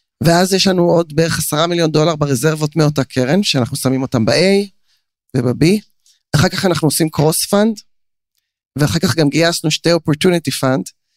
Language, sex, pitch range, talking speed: Hebrew, male, 140-175 Hz, 150 wpm